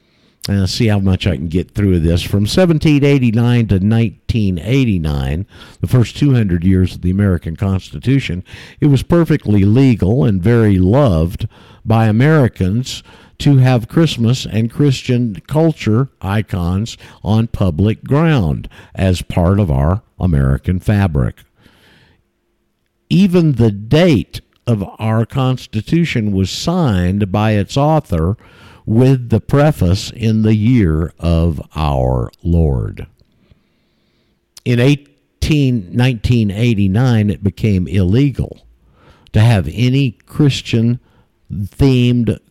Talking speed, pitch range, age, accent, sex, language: 115 wpm, 95-125 Hz, 50-69, American, male, English